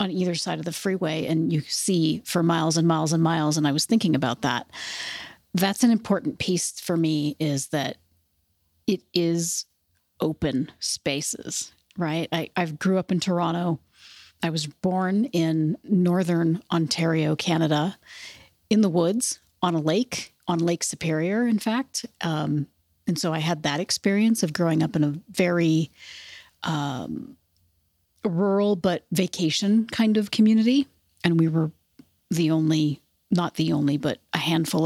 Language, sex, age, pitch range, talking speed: English, female, 40-59, 155-185 Hz, 155 wpm